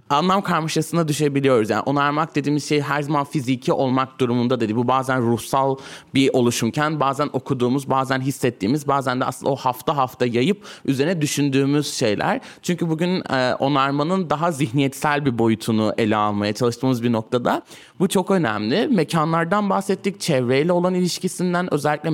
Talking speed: 145 wpm